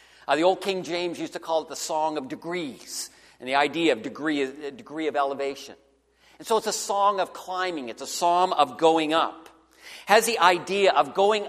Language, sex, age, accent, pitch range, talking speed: English, male, 50-69, American, 155-200 Hz, 210 wpm